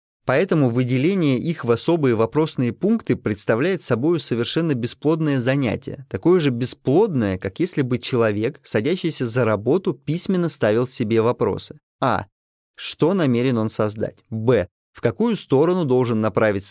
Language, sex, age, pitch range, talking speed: Russian, male, 20-39, 115-155 Hz, 135 wpm